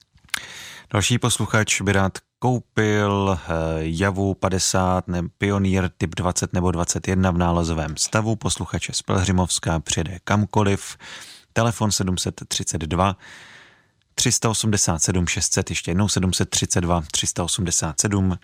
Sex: male